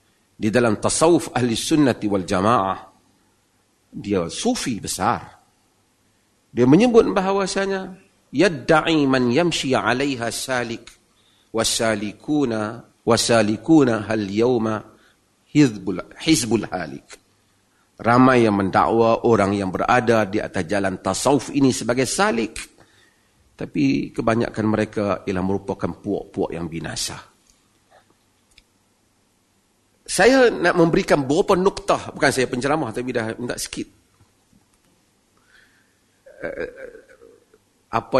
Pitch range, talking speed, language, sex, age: 105-165 Hz, 95 wpm, Malay, male, 50-69